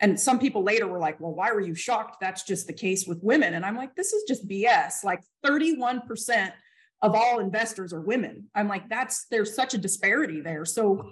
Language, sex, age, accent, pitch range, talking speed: English, female, 30-49, American, 190-245 Hz, 215 wpm